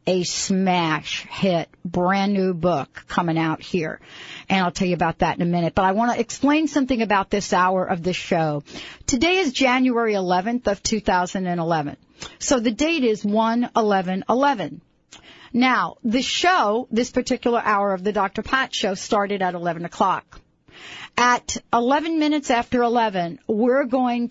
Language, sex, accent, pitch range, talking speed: English, female, American, 185-240 Hz, 160 wpm